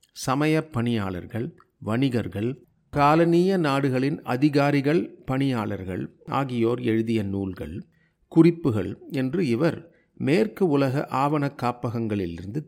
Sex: male